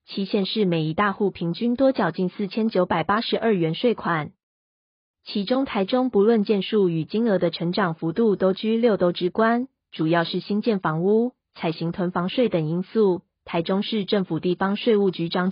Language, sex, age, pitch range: Chinese, female, 20-39, 175-215 Hz